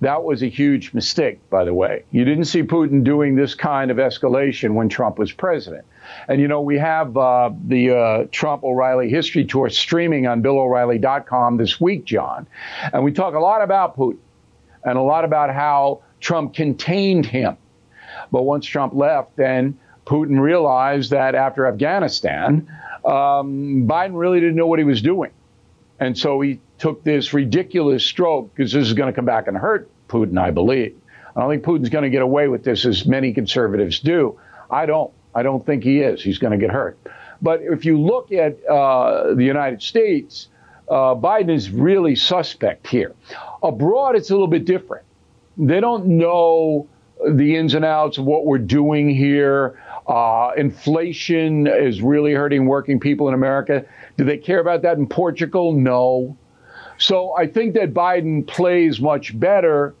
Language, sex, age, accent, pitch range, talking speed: English, male, 50-69, American, 130-160 Hz, 175 wpm